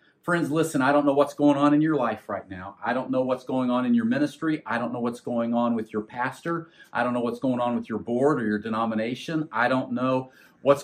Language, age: English, 40-59